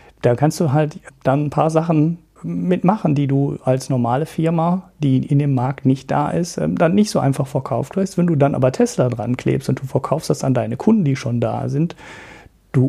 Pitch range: 125-160 Hz